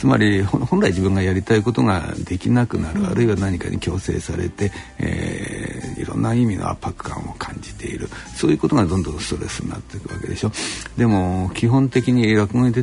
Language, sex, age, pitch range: Japanese, male, 60-79, 95-130 Hz